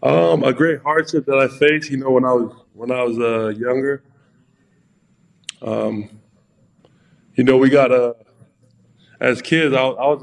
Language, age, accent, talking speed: English, 20-39, American, 165 wpm